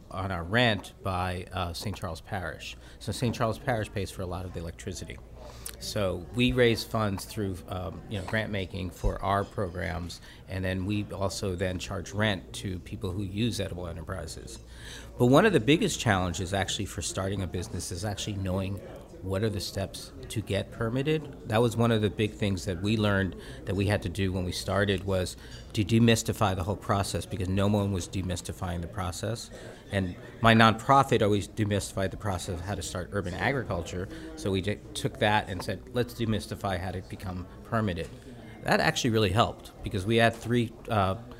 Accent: American